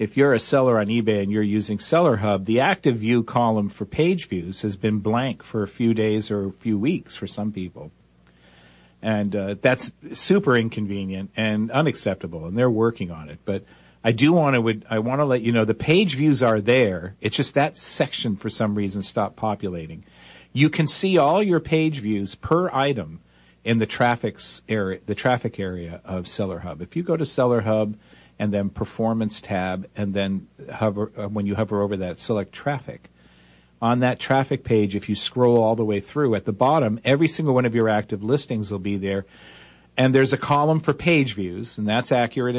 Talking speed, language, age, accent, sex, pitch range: 200 wpm, English, 50-69, American, male, 100-125 Hz